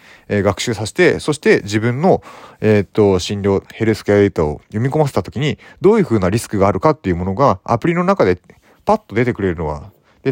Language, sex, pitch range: Japanese, male, 95-140 Hz